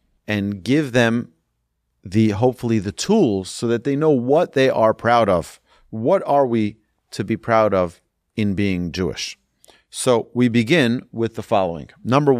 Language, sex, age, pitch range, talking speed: English, male, 40-59, 95-125 Hz, 160 wpm